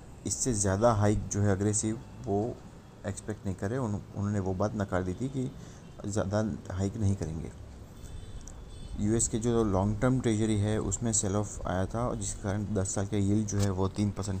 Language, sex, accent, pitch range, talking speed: English, male, Indian, 95-110 Hz, 185 wpm